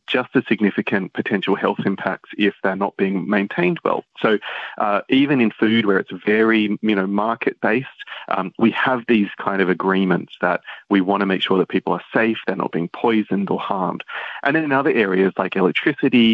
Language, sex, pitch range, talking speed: Dutch, male, 95-115 Hz, 190 wpm